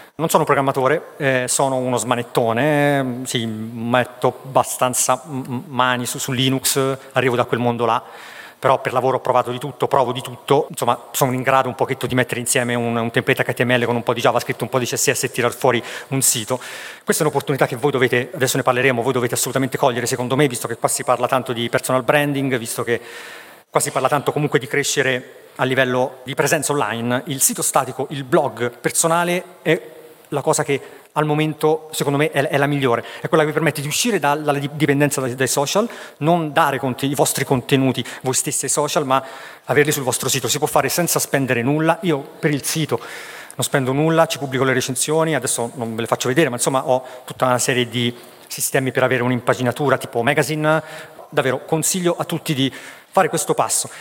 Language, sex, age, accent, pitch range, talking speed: Italian, male, 40-59, native, 125-150 Hz, 200 wpm